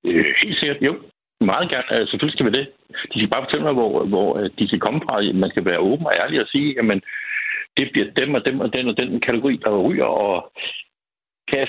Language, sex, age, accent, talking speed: Danish, male, 60-79, native, 230 wpm